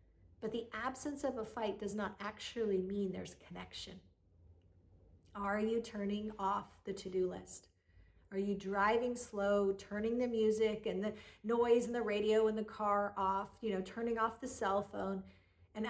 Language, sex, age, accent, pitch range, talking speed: English, female, 40-59, American, 195-235 Hz, 170 wpm